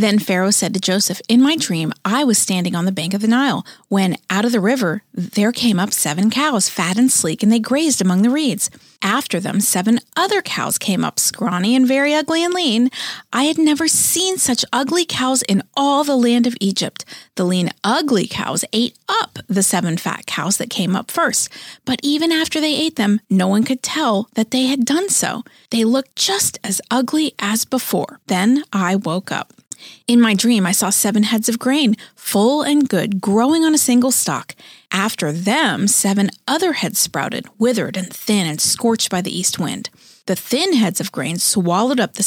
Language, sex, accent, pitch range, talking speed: English, female, American, 195-260 Hz, 200 wpm